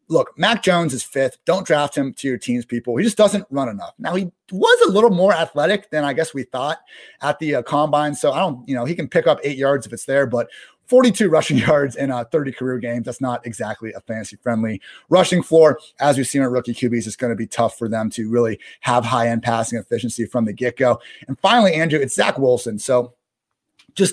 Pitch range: 120-180 Hz